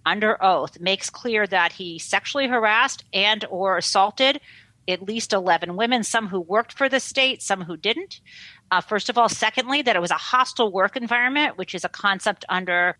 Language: English